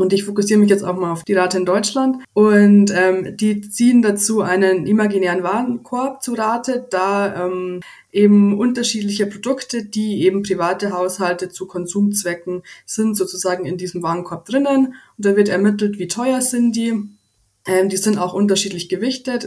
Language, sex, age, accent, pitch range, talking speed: German, female, 20-39, German, 180-210 Hz, 165 wpm